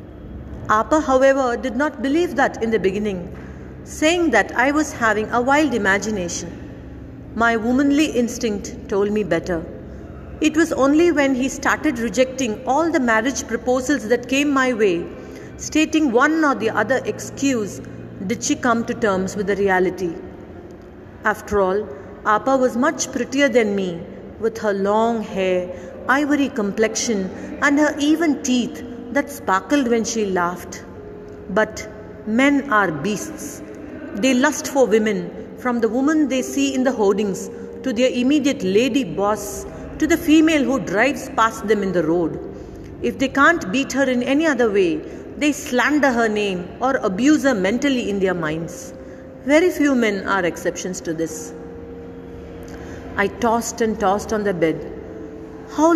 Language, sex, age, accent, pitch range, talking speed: Tamil, female, 50-69, native, 205-275 Hz, 150 wpm